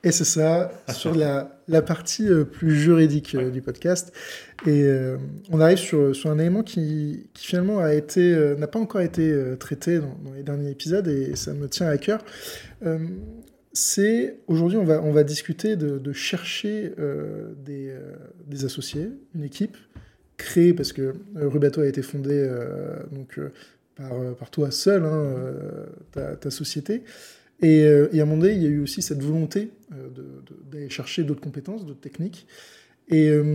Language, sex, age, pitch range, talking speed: French, male, 20-39, 145-180 Hz, 185 wpm